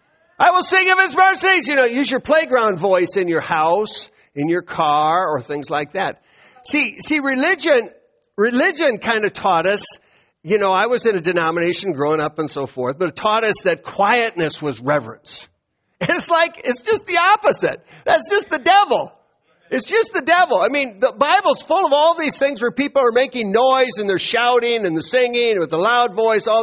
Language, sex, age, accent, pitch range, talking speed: English, male, 50-69, American, 170-270 Hz, 205 wpm